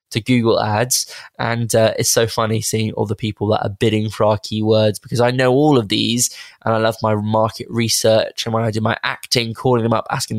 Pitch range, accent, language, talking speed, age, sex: 110-135 Hz, British, English, 230 wpm, 20-39, male